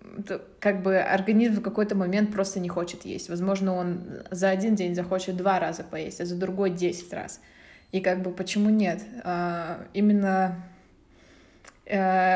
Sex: female